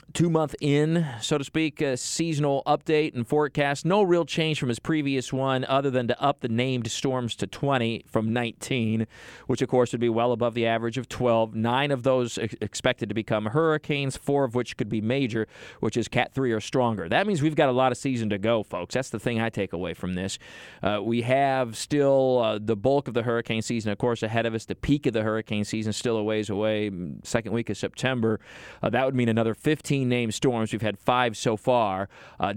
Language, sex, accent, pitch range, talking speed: English, male, American, 110-140 Hz, 225 wpm